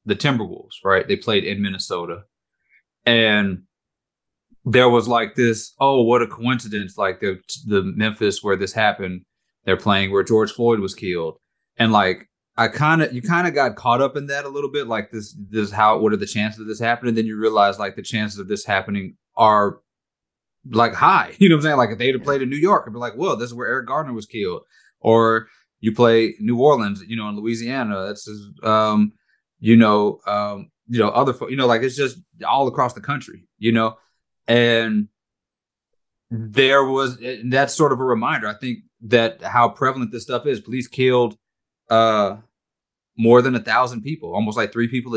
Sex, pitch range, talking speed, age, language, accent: male, 105-125 Hz, 200 wpm, 30-49, English, American